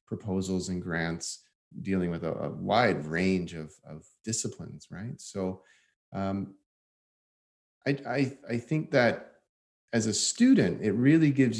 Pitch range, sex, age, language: 85-110 Hz, male, 30-49, English